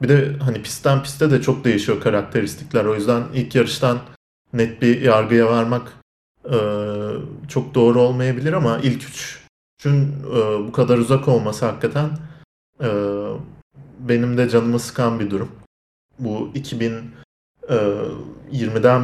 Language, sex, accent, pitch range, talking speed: Turkish, male, native, 110-130 Hz, 125 wpm